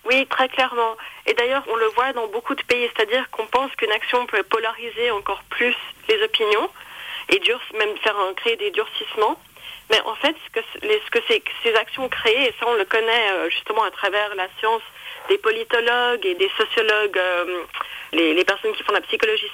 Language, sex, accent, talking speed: French, female, French, 205 wpm